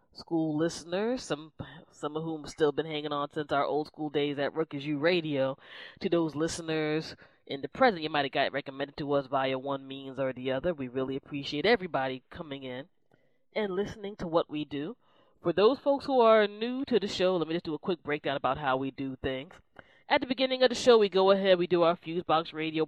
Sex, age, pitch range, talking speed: female, 20-39, 145-185 Hz, 225 wpm